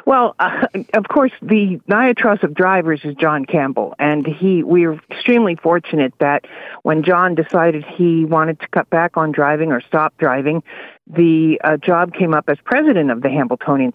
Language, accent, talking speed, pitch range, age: English, American, 170 wpm, 165-210 Hz, 50-69